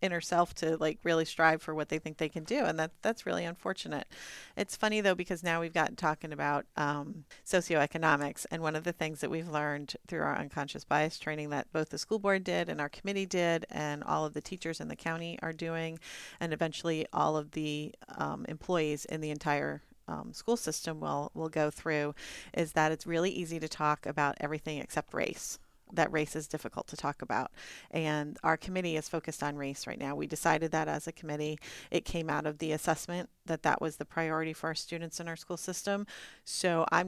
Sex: female